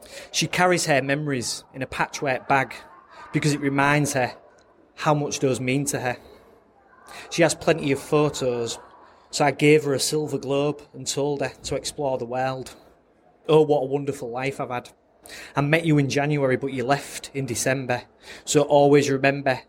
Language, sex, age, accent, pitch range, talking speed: English, male, 20-39, British, 125-145 Hz, 175 wpm